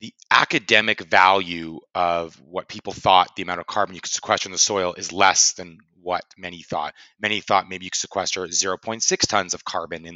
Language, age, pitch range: English, 30-49, 85-100 Hz